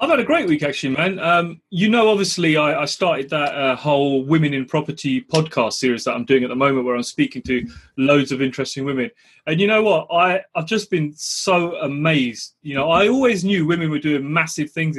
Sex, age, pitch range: male, 30-49, 140-195 Hz